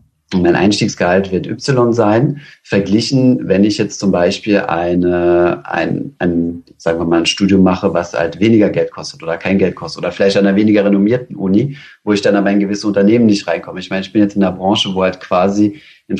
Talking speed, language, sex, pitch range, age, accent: 210 wpm, German, male, 90-105 Hz, 30-49, German